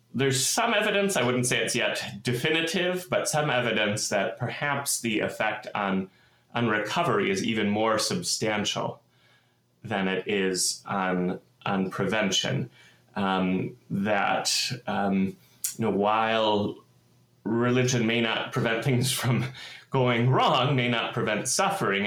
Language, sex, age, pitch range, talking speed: English, male, 30-49, 100-130 Hz, 130 wpm